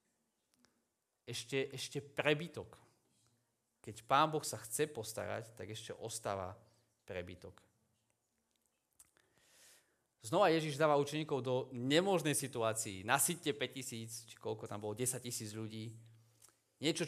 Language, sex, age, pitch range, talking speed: Slovak, male, 30-49, 115-145 Hz, 105 wpm